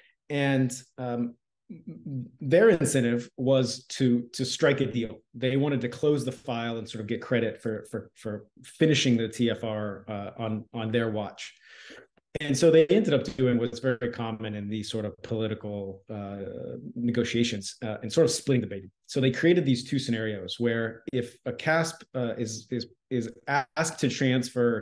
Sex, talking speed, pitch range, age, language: male, 175 wpm, 115-135 Hz, 30-49, English